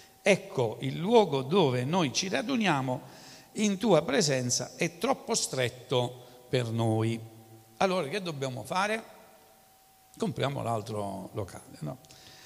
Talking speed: 110 wpm